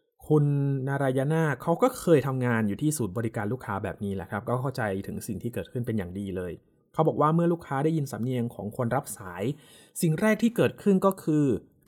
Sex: male